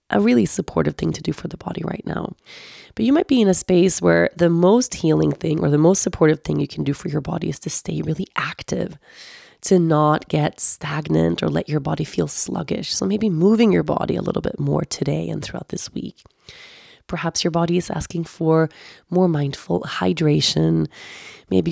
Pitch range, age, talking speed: 150-185 Hz, 20-39, 200 wpm